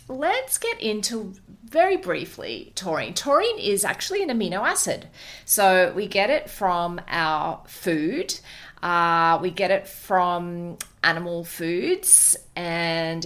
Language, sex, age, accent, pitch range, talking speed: English, female, 30-49, Australian, 165-205 Hz, 120 wpm